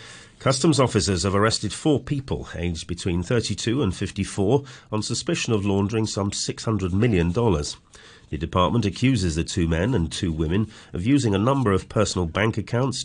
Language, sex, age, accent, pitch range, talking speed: English, male, 40-59, British, 100-145 Hz, 160 wpm